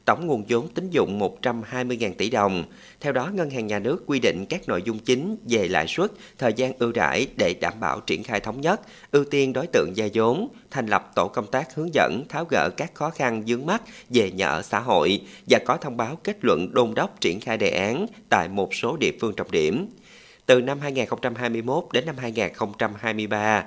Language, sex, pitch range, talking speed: Vietnamese, male, 105-135 Hz, 215 wpm